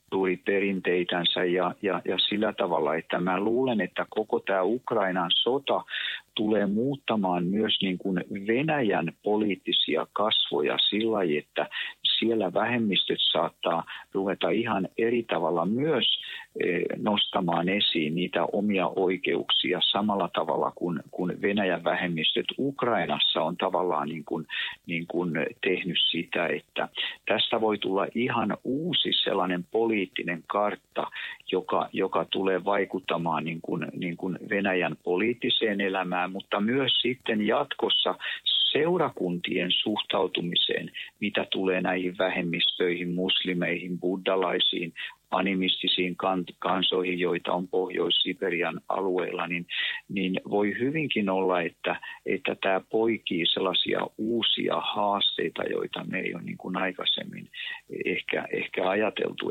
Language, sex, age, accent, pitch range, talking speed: Finnish, male, 50-69, native, 90-105 Hz, 110 wpm